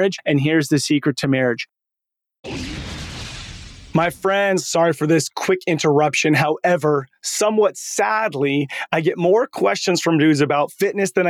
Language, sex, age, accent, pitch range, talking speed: English, male, 30-49, American, 150-185 Hz, 135 wpm